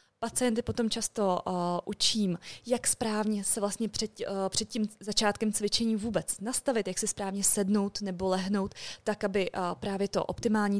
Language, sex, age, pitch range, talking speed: Czech, female, 20-39, 180-220 Hz, 145 wpm